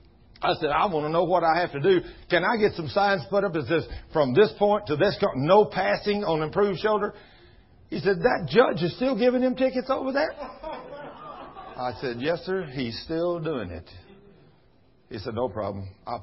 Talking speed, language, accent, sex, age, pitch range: 205 wpm, English, American, male, 50-69, 135-220 Hz